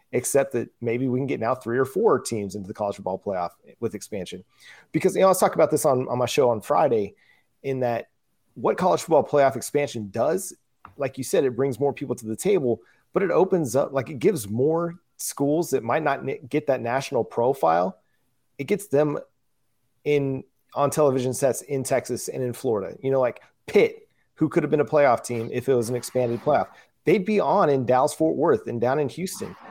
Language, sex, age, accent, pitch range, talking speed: English, male, 30-49, American, 120-150 Hz, 215 wpm